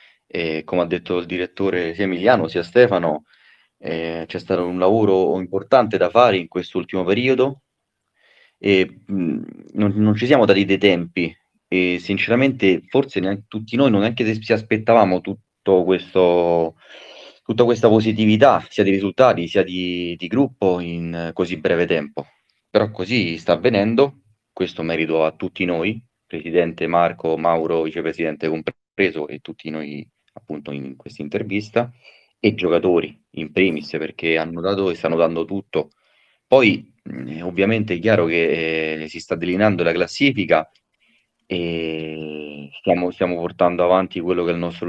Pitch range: 85-110 Hz